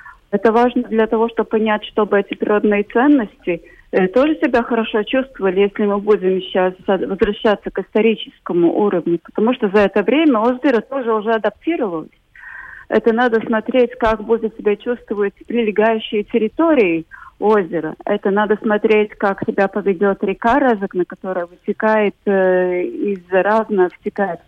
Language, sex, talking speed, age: Russian, female, 140 wpm, 30-49